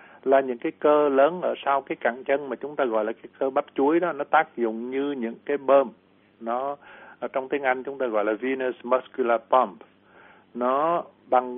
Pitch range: 120-140 Hz